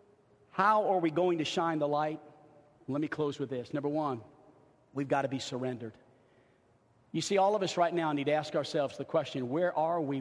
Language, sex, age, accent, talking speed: English, male, 50-69, American, 210 wpm